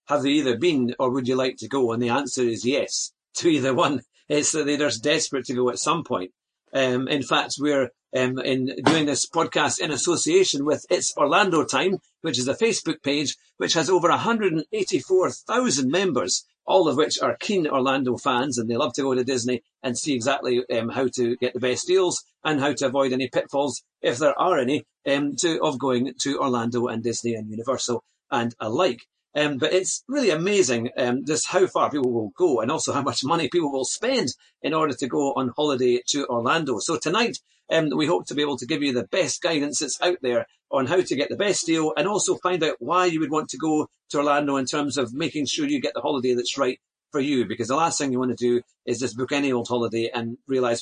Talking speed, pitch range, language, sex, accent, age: 225 wpm, 125-160 Hz, English, male, British, 50-69